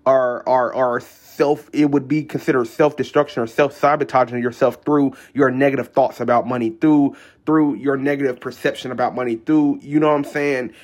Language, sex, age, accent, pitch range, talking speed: English, male, 20-39, American, 125-150 Hz, 170 wpm